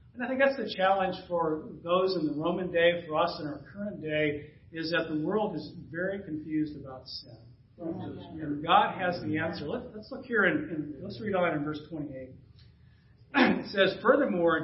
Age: 40-59